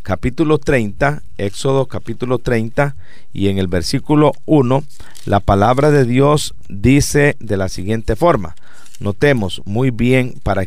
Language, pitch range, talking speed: English, 100-135 Hz, 130 wpm